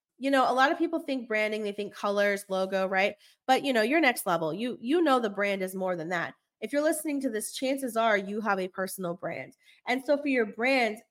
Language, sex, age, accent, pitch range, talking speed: English, female, 20-39, American, 200-260 Hz, 245 wpm